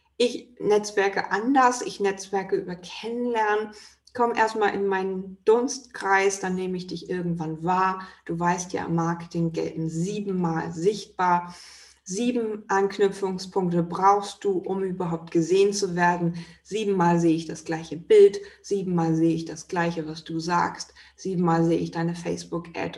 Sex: female